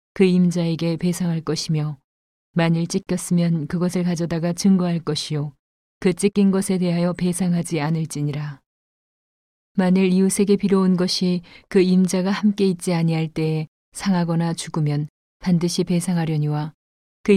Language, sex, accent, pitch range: Korean, female, native, 160-185 Hz